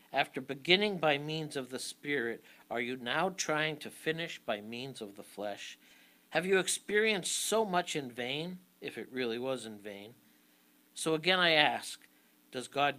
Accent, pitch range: American, 110-170 Hz